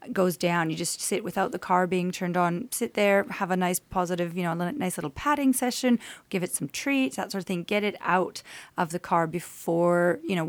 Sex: female